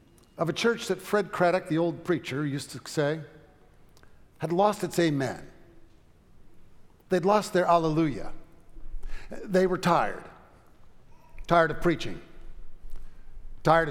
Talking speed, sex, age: 115 wpm, male, 50-69